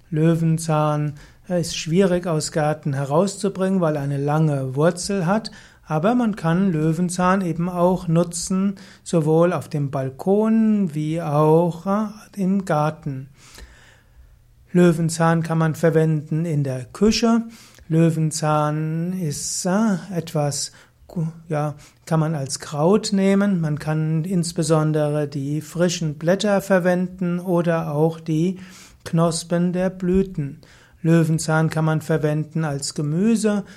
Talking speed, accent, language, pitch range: 110 wpm, German, German, 155-185 Hz